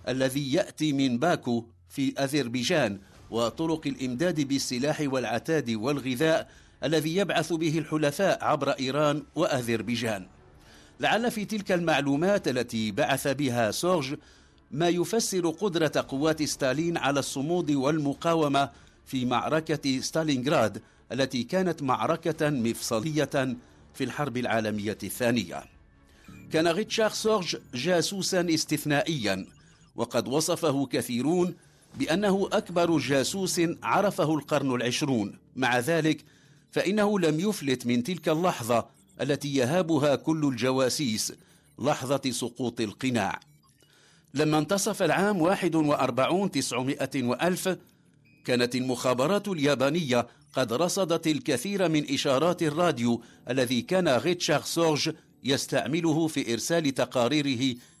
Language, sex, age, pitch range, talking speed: English, male, 50-69, 125-165 Hz, 100 wpm